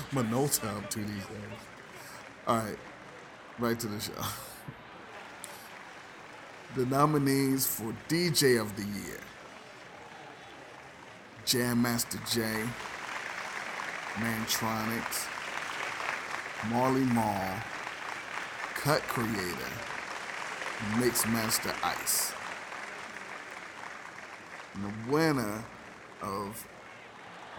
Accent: American